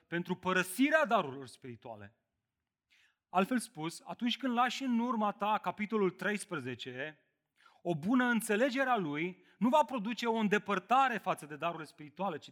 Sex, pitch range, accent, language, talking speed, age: male, 145-205 Hz, native, Romanian, 140 wpm, 30-49